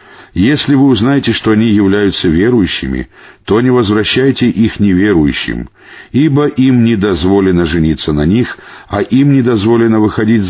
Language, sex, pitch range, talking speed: Russian, male, 85-125 Hz, 135 wpm